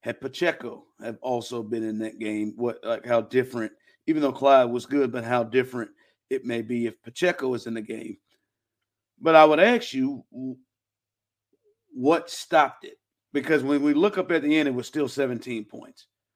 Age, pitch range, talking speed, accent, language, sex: 50-69, 120-155 Hz, 185 wpm, American, English, male